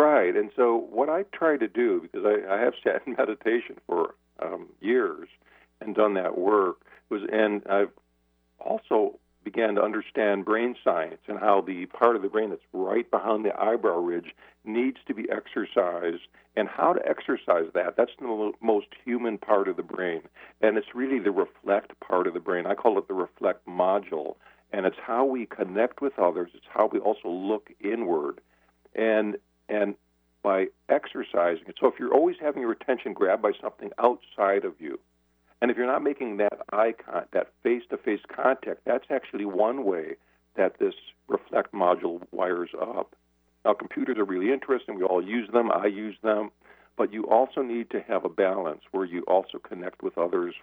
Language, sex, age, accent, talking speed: English, male, 50-69, American, 180 wpm